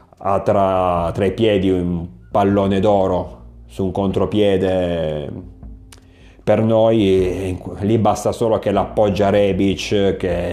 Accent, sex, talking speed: native, male, 115 wpm